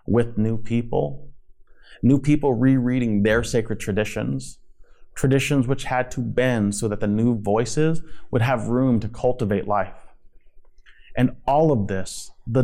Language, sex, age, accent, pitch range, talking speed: English, male, 30-49, American, 105-125 Hz, 140 wpm